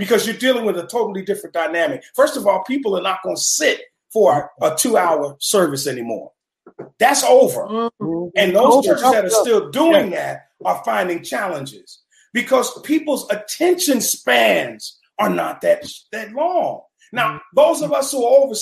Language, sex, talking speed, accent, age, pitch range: English, male, 165 wpm, American, 40-59, 215-300 Hz